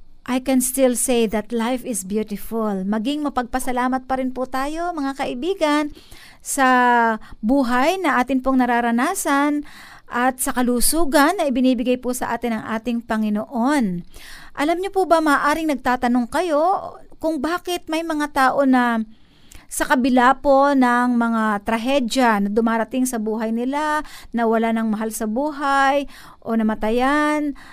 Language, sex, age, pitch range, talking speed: Filipino, female, 50-69, 235-300 Hz, 140 wpm